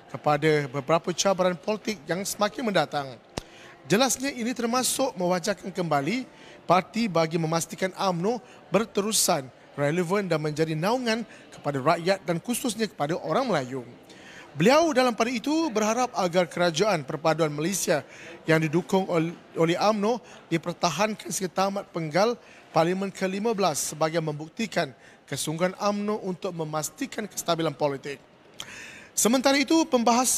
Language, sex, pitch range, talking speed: Malay, male, 160-210 Hz, 115 wpm